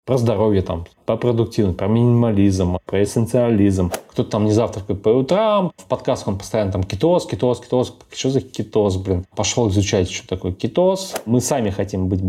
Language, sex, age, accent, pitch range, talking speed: Russian, male, 20-39, native, 100-135 Hz, 175 wpm